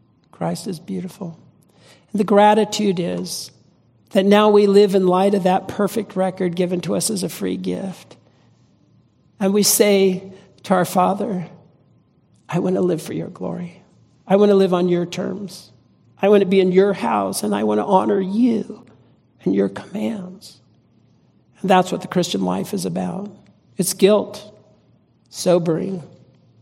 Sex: male